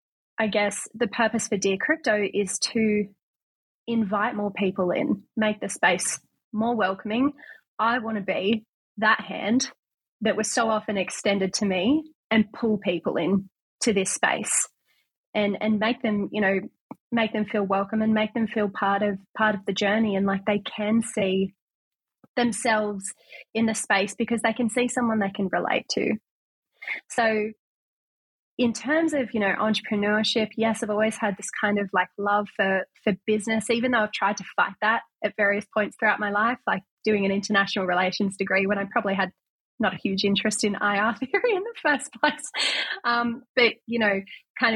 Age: 20-39